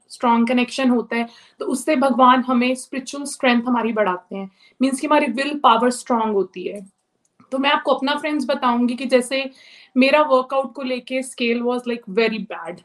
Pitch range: 230-265 Hz